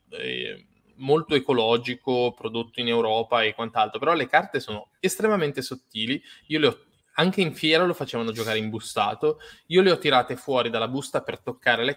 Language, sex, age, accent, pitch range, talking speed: Italian, male, 20-39, native, 120-150 Hz, 165 wpm